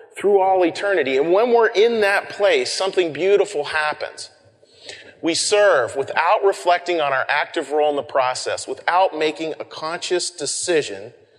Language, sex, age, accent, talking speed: English, male, 40-59, American, 150 wpm